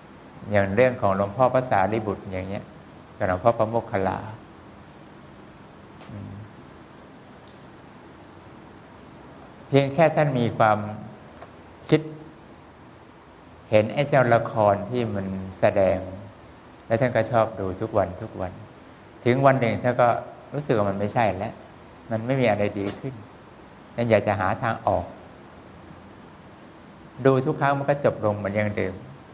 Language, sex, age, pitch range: English, male, 60-79, 100-120 Hz